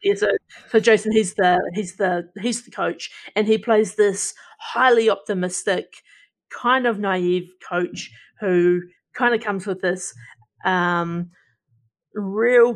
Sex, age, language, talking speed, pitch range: female, 30-49, English, 135 wpm, 180-210 Hz